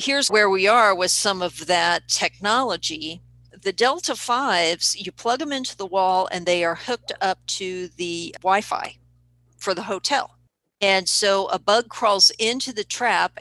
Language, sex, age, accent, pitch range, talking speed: English, female, 50-69, American, 165-205 Hz, 165 wpm